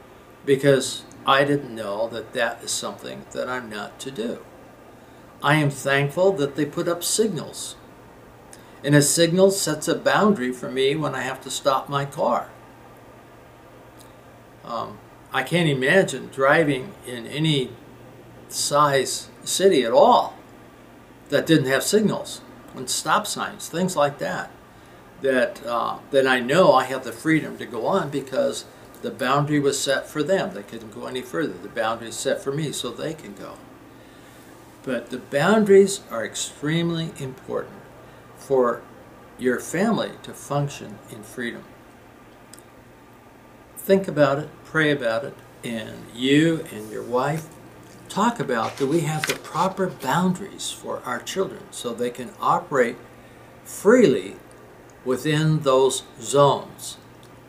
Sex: male